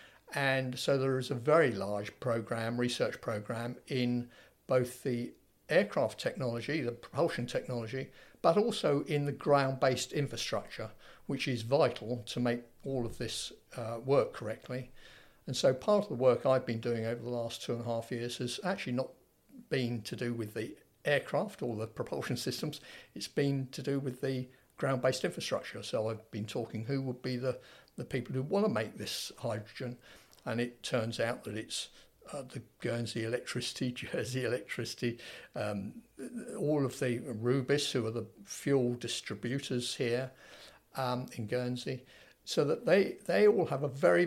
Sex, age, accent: male, 50-69, British